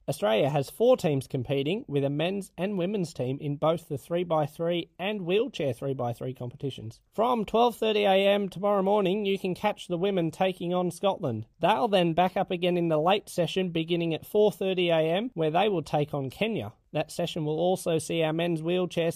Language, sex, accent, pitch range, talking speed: English, male, Australian, 155-205 Hz, 180 wpm